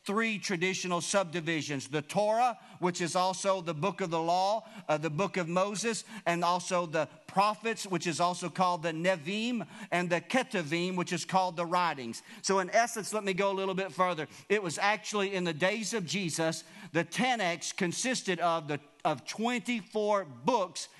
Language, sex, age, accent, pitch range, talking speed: English, male, 50-69, American, 170-205 Hz, 175 wpm